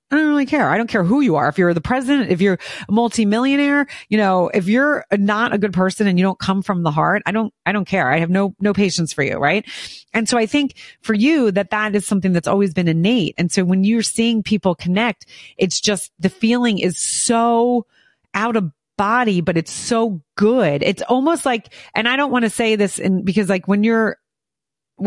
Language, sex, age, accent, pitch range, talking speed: English, female, 30-49, American, 175-230 Hz, 225 wpm